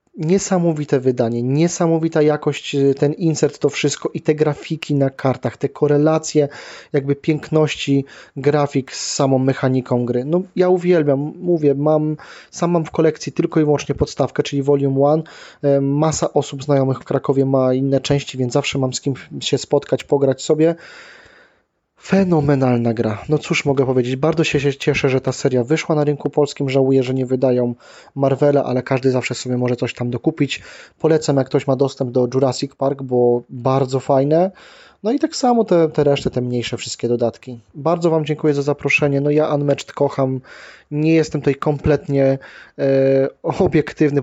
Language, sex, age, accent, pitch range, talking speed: Polish, male, 20-39, native, 135-155 Hz, 165 wpm